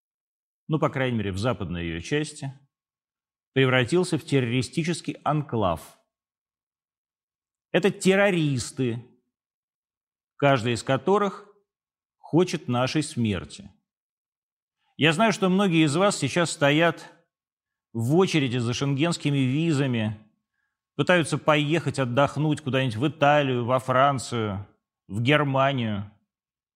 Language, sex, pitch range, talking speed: Russian, male, 120-170 Hz, 95 wpm